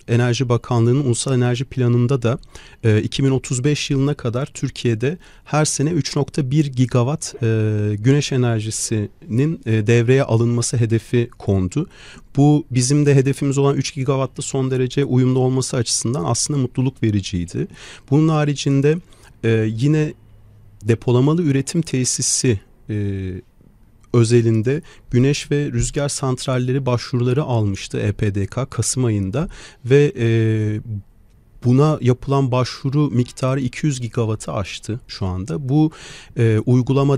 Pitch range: 110-140 Hz